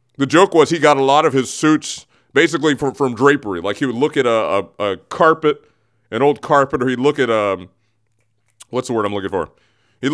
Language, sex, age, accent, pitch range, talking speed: English, male, 30-49, American, 105-145 Hz, 225 wpm